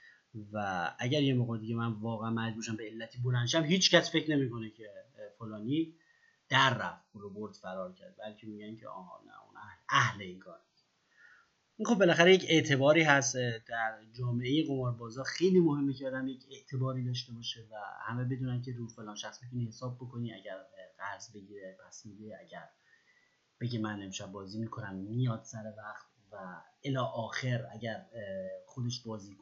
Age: 30-49